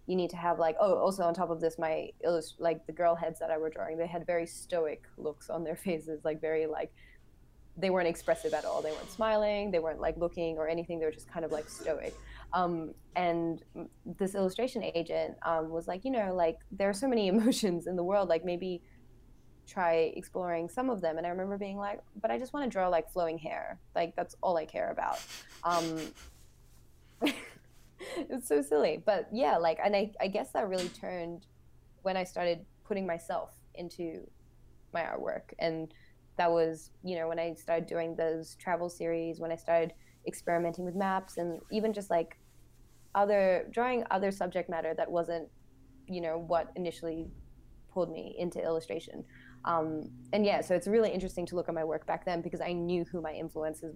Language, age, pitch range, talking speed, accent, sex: English, 20-39, 160-180 Hz, 195 wpm, American, female